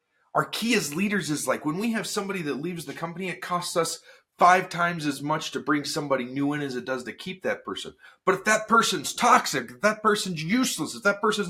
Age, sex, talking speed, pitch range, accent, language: 30-49, male, 235 wpm, 140-210 Hz, American, English